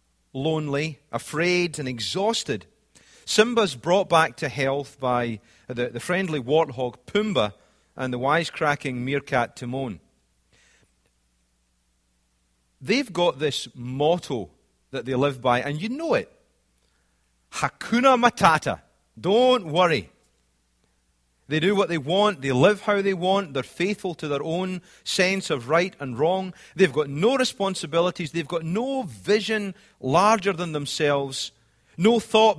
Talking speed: 125 wpm